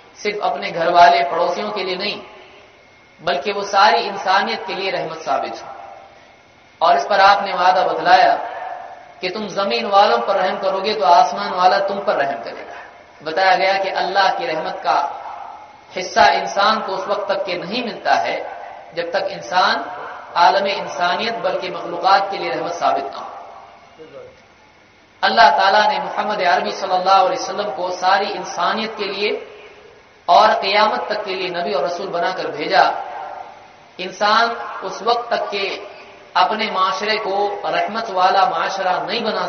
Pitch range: 180-210 Hz